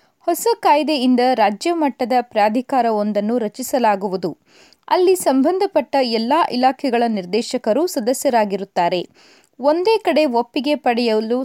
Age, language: 20-39, Kannada